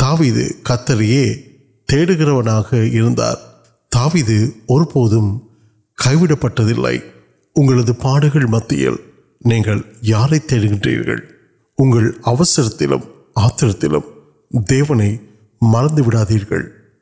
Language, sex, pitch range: Urdu, male, 115-145 Hz